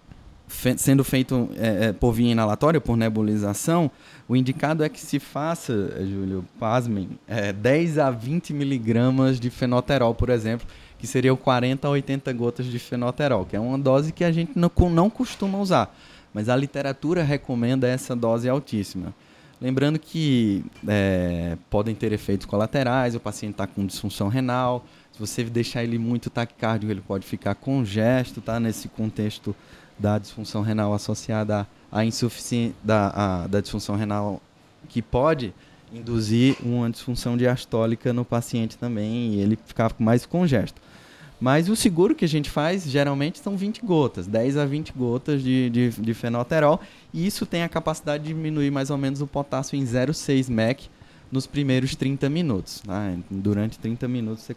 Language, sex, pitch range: Portuguese, male, 110-140 Hz